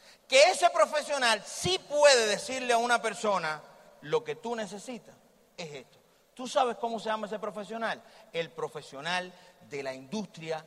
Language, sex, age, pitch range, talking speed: Spanish, male, 40-59, 215-275 Hz, 150 wpm